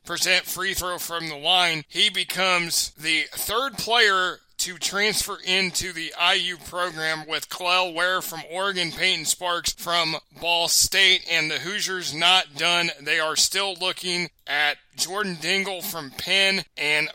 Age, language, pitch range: 30-49, English, 165-190 Hz